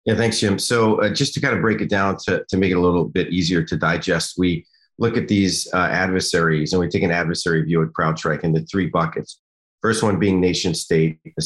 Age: 40-59